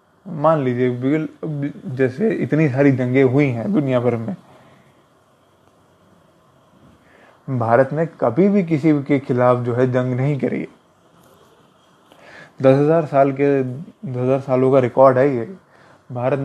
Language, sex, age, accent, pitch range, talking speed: English, male, 20-39, Indian, 130-155 Hz, 125 wpm